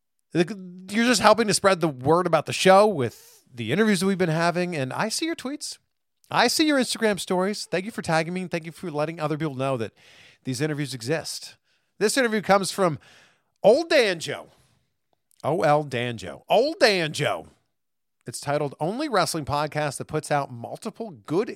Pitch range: 130-180 Hz